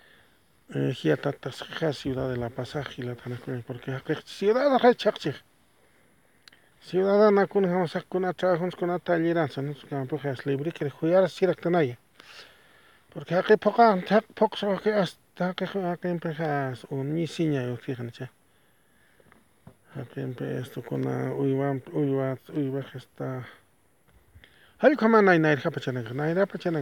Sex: male